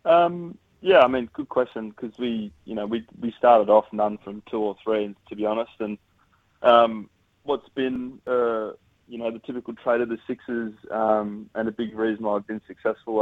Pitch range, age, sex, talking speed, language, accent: 105-115 Hz, 20-39, male, 200 wpm, English, Australian